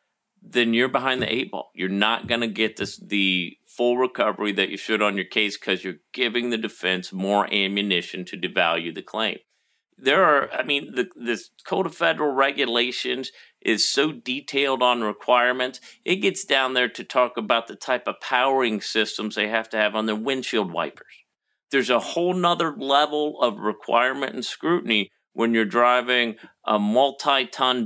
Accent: American